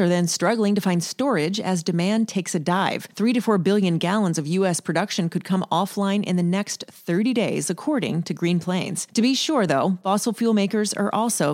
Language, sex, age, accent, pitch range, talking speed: English, female, 30-49, American, 170-215 Hz, 210 wpm